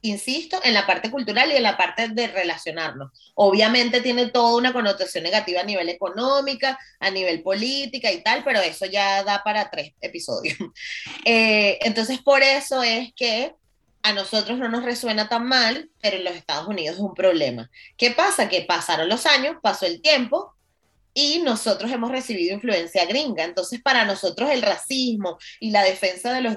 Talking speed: 175 wpm